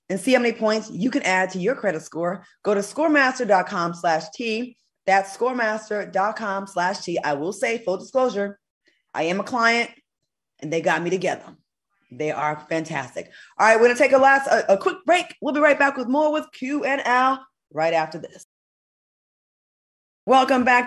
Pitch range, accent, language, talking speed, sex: 170-265 Hz, American, English, 185 wpm, female